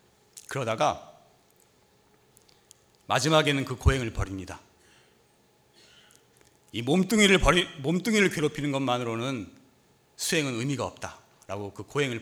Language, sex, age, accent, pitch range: Korean, male, 40-59, native, 105-165 Hz